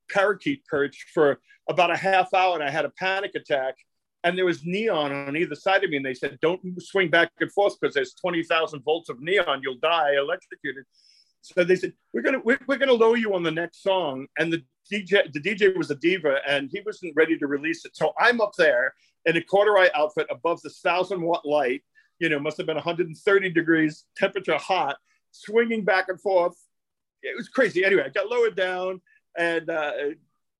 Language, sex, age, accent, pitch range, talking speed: English, male, 40-59, American, 145-200 Hz, 210 wpm